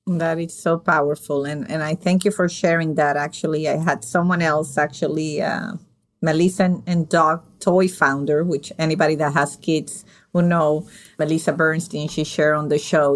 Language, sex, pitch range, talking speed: English, female, 155-185 Hz, 175 wpm